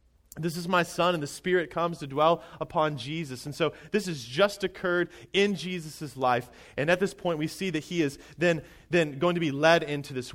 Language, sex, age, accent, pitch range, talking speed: English, male, 30-49, American, 140-185 Hz, 220 wpm